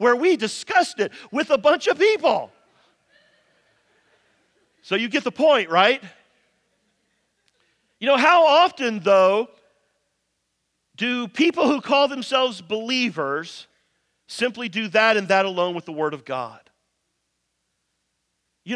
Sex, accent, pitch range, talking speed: male, American, 205-275 Hz, 120 wpm